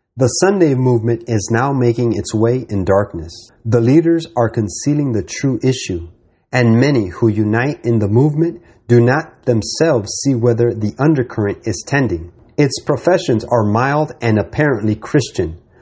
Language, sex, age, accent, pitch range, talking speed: English, male, 30-49, American, 110-145 Hz, 150 wpm